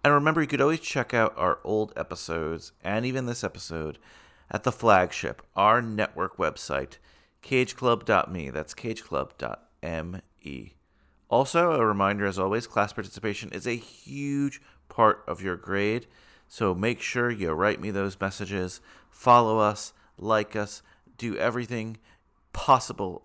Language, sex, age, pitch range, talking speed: English, male, 30-49, 90-120 Hz, 135 wpm